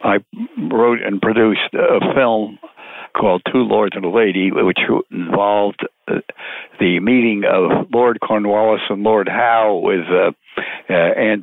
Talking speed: 125 wpm